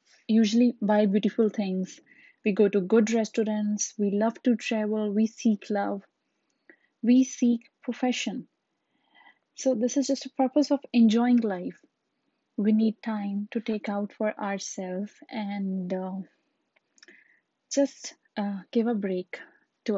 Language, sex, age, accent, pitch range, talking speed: English, female, 20-39, Indian, 210-260 Hz, 130 wpm